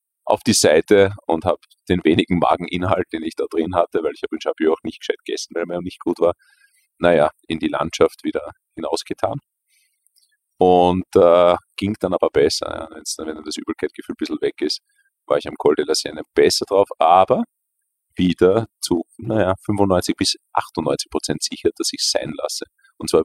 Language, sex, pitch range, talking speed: German, male, 290-435 Hz, 185 wpm